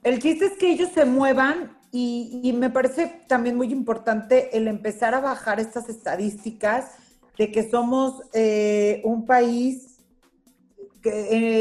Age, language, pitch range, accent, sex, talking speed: 40-59, Spanish, 210-270 Hz, Mexican, female, 140 wpm